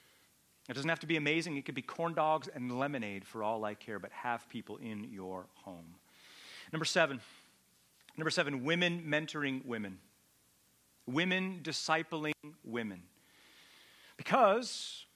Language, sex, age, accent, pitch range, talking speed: English, male, 40-59, American, 115-165 Hz, 135 wpm